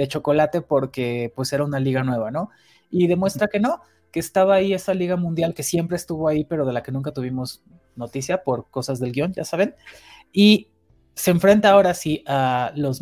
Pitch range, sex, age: 145-185 Hz, male, 30-49